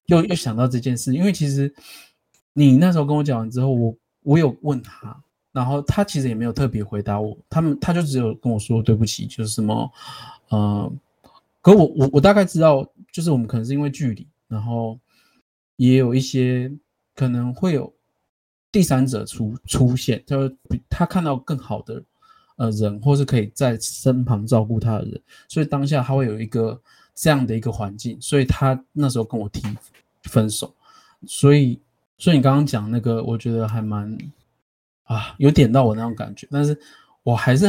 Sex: male